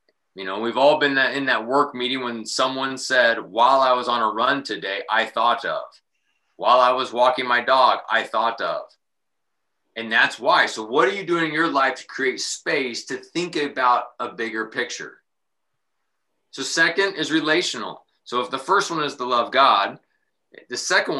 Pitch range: 120-150 Hz